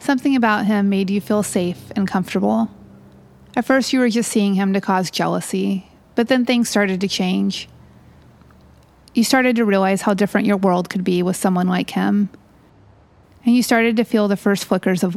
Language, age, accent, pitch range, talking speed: English, 30-49, American, 185-225 Hz, 190 wpm